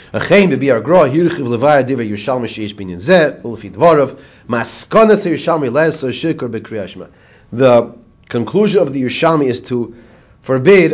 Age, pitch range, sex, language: 40-59, 115-150 Hz, male, English